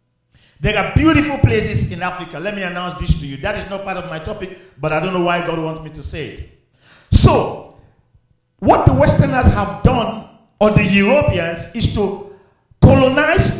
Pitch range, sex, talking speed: 145-195 Hz, male, 185 wpm